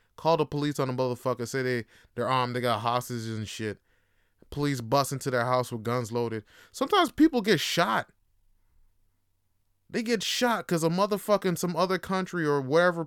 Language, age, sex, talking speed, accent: English, 20-39, male, 180 wpm, American